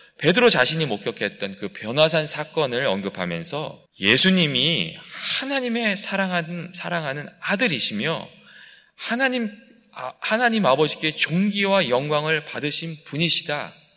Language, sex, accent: Korean, male, native